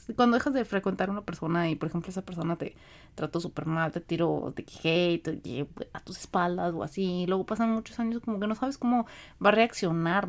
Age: 30-49